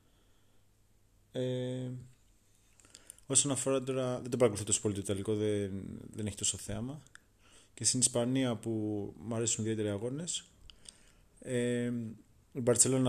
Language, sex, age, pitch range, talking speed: Greek, male, 20-39, 100-125 Hz, 125 wpm